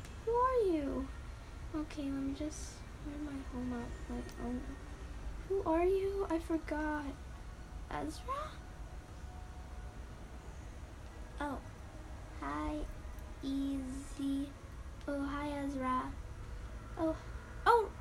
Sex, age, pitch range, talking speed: female, 10-29, 235-325 Hz, 85 wpm